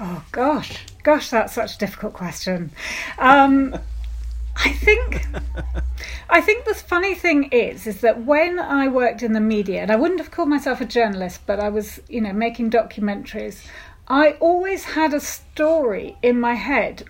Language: English